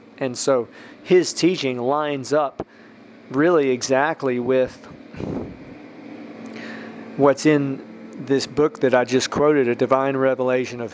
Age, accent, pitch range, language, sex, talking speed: 40-59, American, 125-140 Hz, English, male, 115 wpm